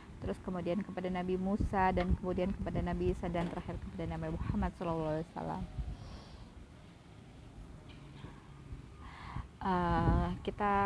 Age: 20-39